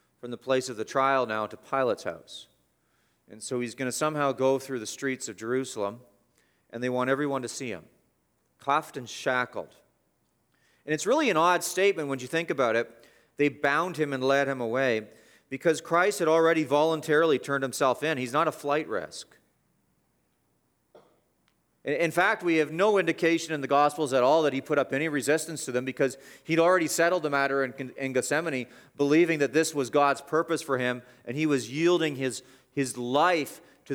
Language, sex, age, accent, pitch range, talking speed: English, male, 40-59, American, 130-160 Hz, 185 wpm